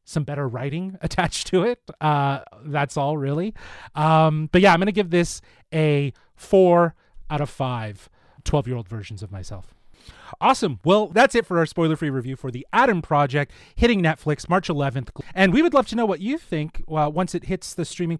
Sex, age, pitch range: male, 30-49, 140-190 Hz